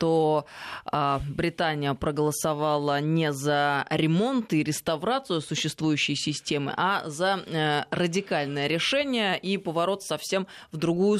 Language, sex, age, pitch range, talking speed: Russian, female, 20-39, 145-180 Hz, 100 wpm